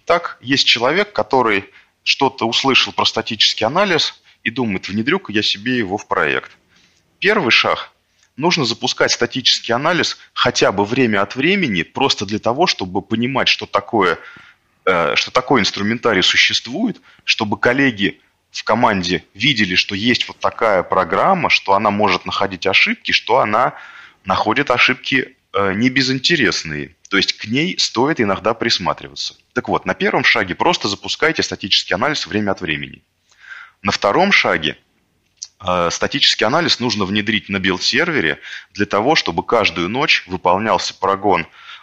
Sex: male